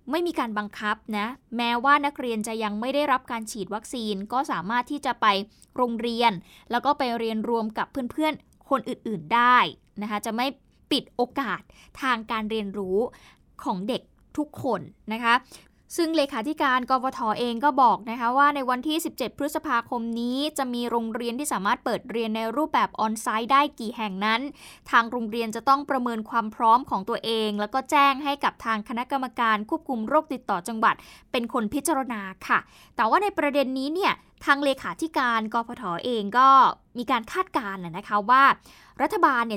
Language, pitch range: Thai, 220-275 Hz